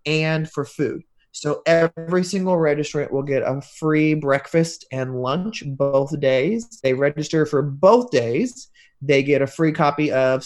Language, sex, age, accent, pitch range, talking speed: English, male, 30-49, American, 135-175 Hz, 155 wpm